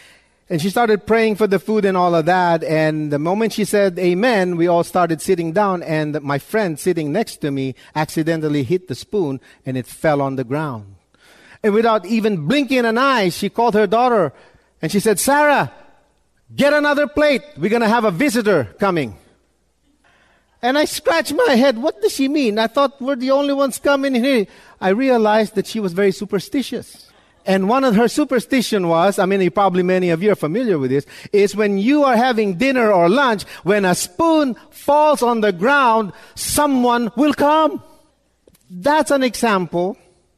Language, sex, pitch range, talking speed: English, male, 170-245 Hz, 185 wpm